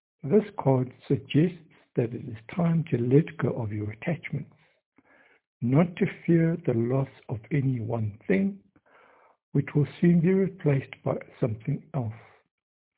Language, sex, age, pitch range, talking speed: English, male, 60-79, 125-165 Hz, 140 wpm